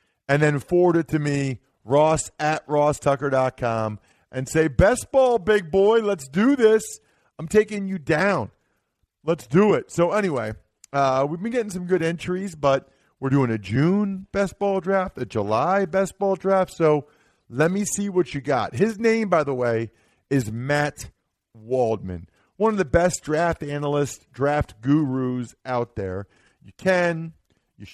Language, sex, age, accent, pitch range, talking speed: English, male, 40-59, American, 125-175 Hz, 160 wpm